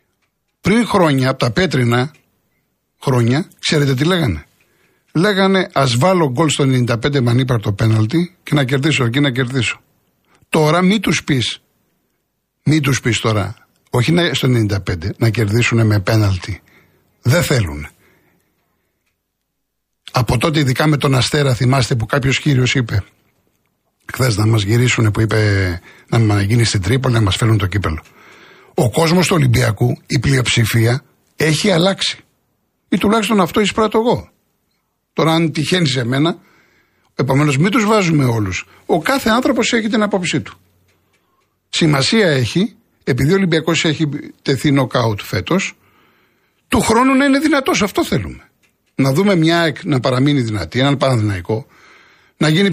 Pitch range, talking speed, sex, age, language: 115-175 Hz, 140 wpm, male, 60-79, Greek